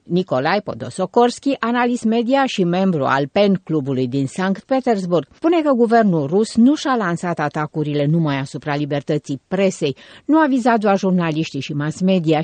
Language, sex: Romanian, female